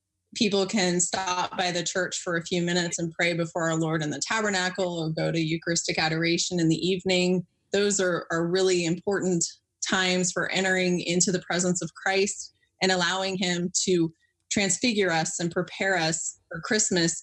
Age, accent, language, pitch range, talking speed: 20-39, American, English, 165-185 Hz, 175 wpm